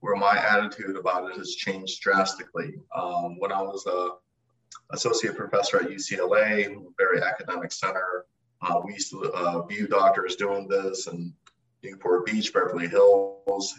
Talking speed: 150 wpm